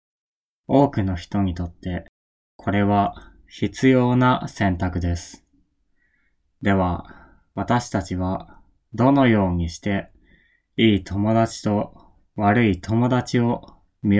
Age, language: 20-39, Japanese